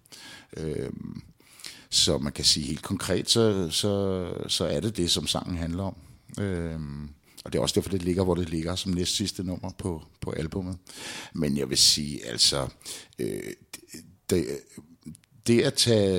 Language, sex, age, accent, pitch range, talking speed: Danish, male, 60-79, native, 95-120 Hz, 160 wpm